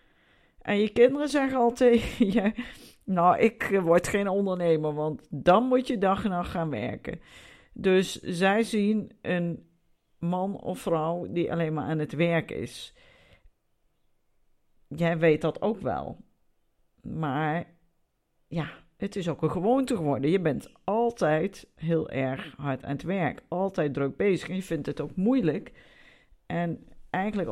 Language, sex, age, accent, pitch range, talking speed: Dutch, female, 50-69, Dutch, 160-210 Hz, 145 wpm